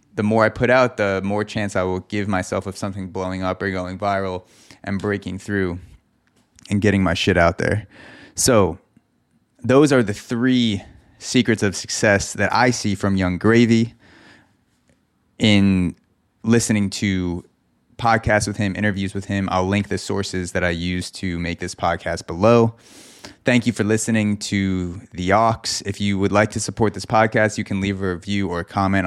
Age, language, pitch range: 20-39, English, 95-110 Hz